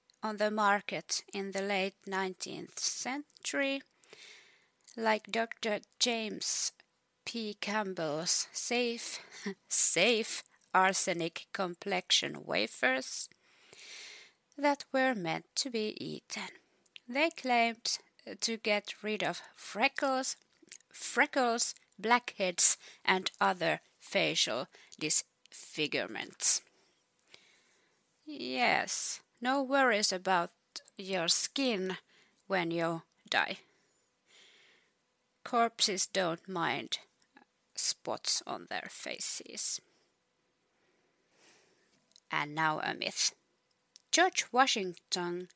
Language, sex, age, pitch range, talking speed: English, female, 30-49, 190-250 Hz, 80 wpm